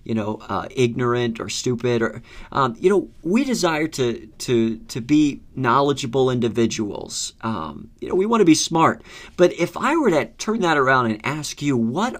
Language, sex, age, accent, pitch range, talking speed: English, male, 40-59, American, 115-150 Hz, 185 wpm